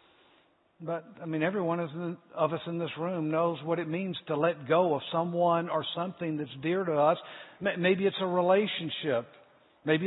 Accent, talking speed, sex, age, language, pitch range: American, 175 wpm, male, 60-79, English, 160-200 Hz